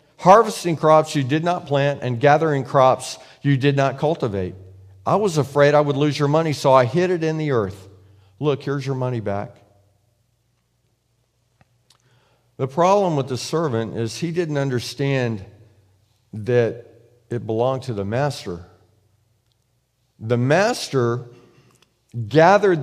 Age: 50-69